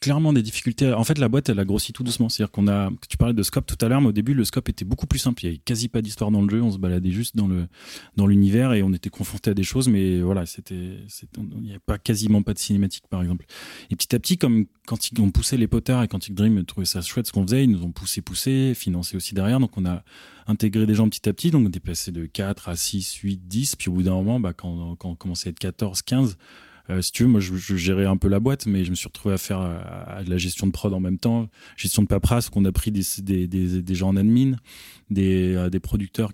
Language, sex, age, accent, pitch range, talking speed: French, male, 30-49, French, 95-115 Hz, 290 wpm